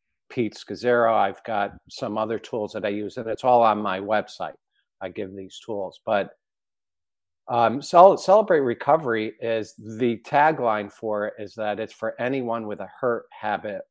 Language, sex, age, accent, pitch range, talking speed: English, male, 50-69, American, 100-120 Hz, 165 wpm